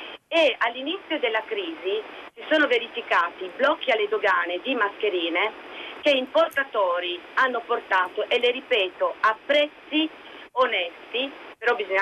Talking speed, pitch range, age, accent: 120 wpm, 195-300 Hz, 30-49, native